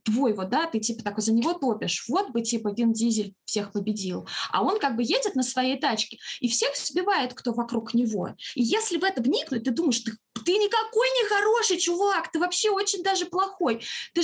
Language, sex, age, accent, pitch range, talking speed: Russian, female, 20-39, native, 225-325 Hz, 205 wpm